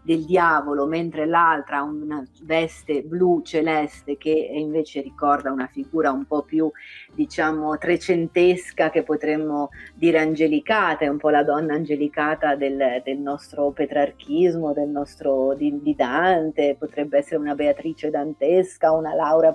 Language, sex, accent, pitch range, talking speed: Italian, female, native, 150-185 Hz, 135 wpm